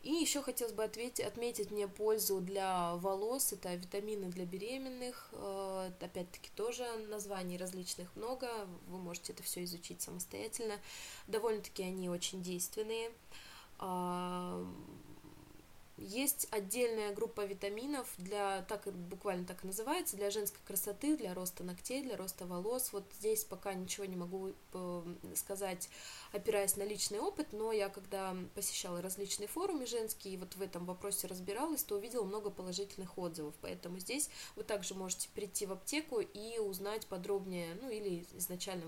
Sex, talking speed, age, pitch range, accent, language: female, 140 wpm, 20-39, 185-220 Hz, native, Russian